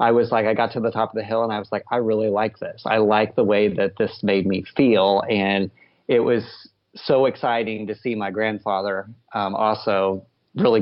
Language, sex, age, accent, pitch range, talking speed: English, male, 30-49, American, 95-110 Hz, 220 wpm